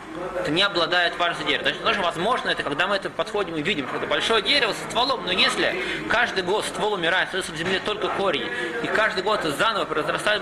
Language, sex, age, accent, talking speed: Russian, male, 20-39, native, 200 wpm